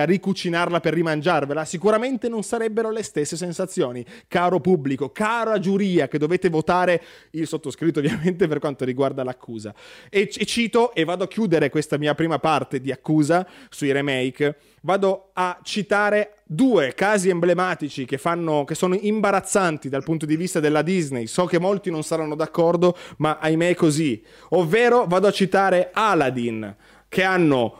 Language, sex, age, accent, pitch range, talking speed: Italian, male, 30-49, native, 150-185 Hz, 155 wpm